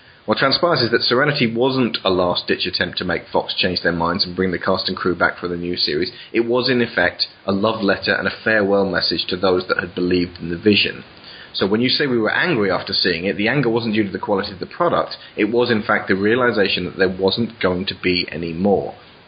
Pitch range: 90-110 Hz